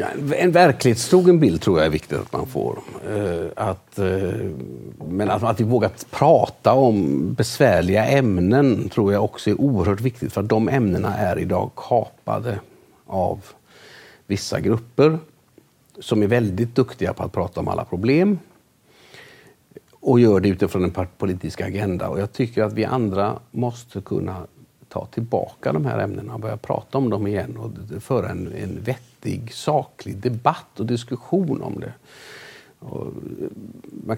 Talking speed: 145 wpm